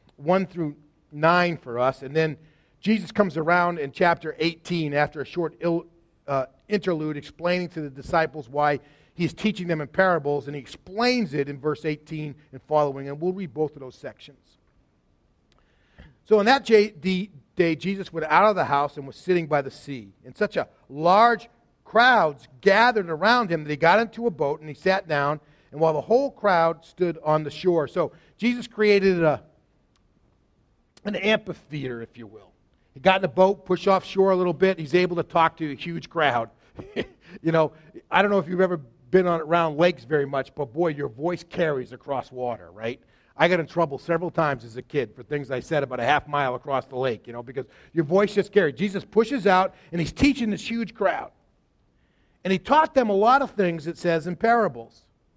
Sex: male